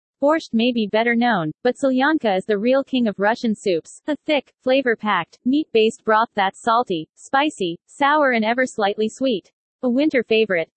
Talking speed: 160 wpm